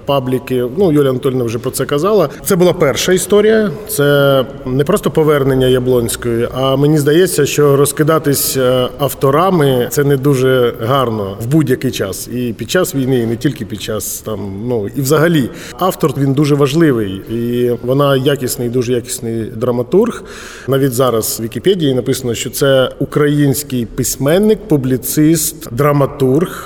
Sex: male